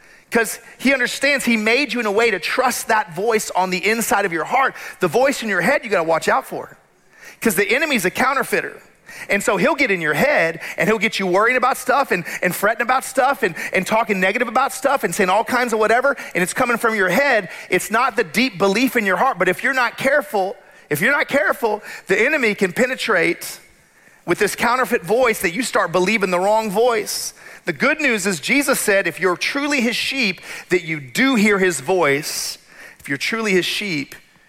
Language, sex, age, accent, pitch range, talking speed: English, male, 40-59, American, 185-255 Hz, 215 wpm